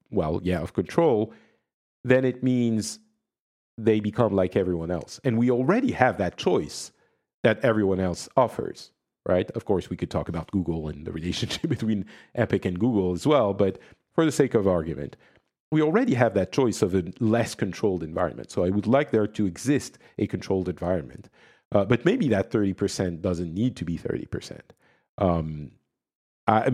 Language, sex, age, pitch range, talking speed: English, male, 50-69, 90-115 Hz, 170 wpm